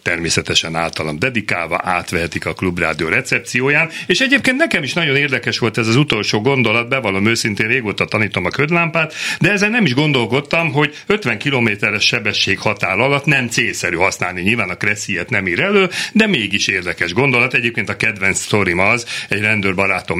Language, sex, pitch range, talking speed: Hungarian, male, 100-135 Hz, 165 wpm